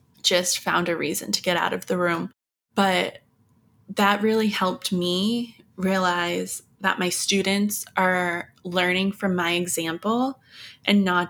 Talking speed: 140 wpm